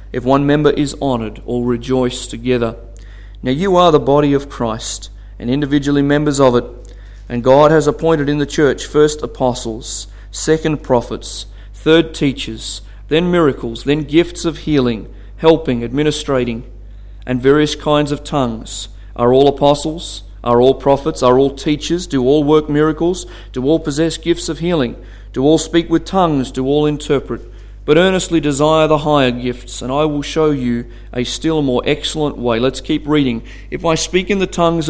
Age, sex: 40-59, male